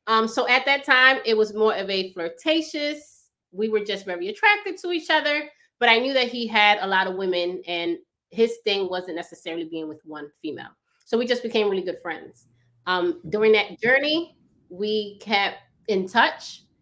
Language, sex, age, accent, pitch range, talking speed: English, female, 20-39, American, 175-235 Hz, 190 wpm